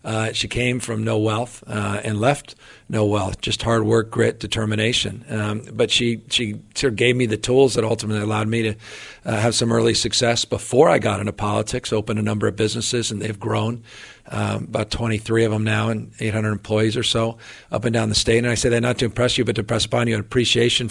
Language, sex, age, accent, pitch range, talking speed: English, male, 50-69, American, 110-120 Hz, 230 wpm